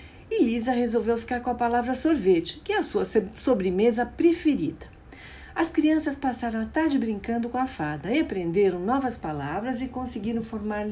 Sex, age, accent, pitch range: female, 60-79, Brazilian, 200-315 Hz